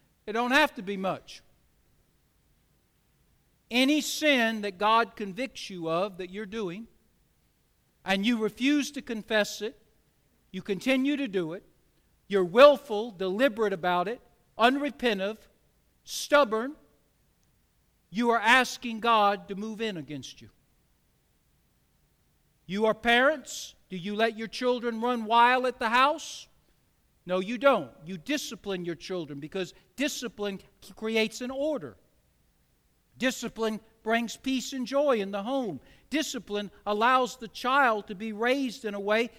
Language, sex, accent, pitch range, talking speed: English, male, American, 205-260 Hz, 130 wpm